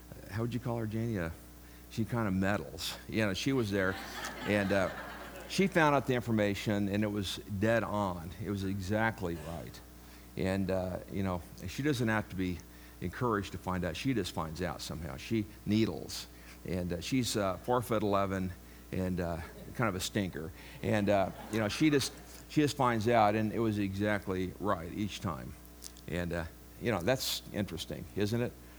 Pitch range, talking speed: 85-115 Hz, 190 wpm